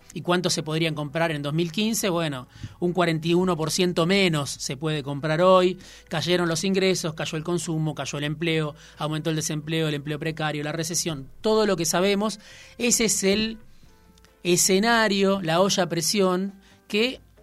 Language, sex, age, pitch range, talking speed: Spanish, male, 30-49, 155-195 Hz, 155 wpm